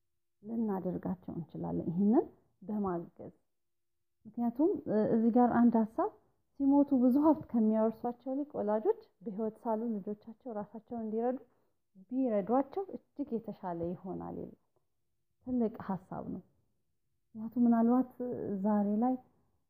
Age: 30-49